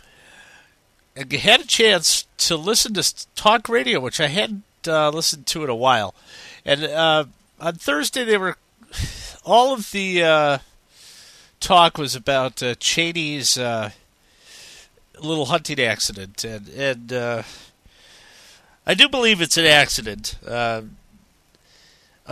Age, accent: 50-69, American